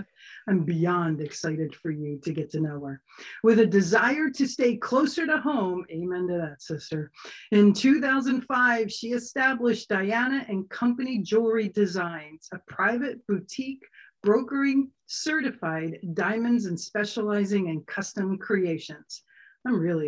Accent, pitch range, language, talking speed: American, 180-235 Hz, English, 130 wpm